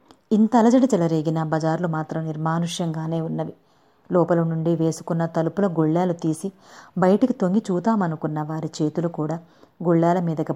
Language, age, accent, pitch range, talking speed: Telugu, 30-49, native, 155-175 Hz, 120 wpm